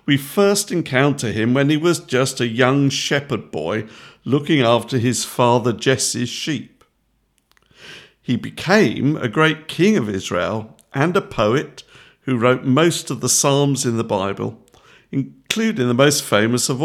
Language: English